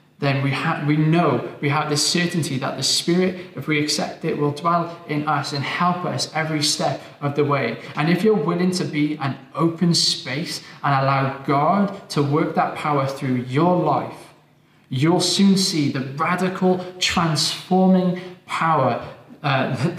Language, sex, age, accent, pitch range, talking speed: English, male, 20-39, British, 145-175 Hz, 165 wpm